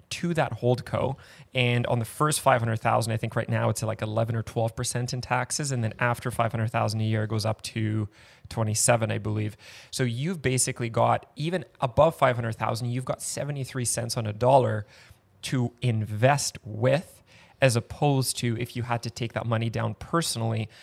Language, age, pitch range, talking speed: English, 20-39, 115-130 Hz, 180 wpm